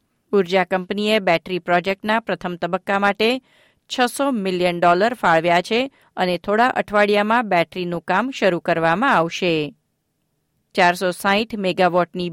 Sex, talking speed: female, 90 wpm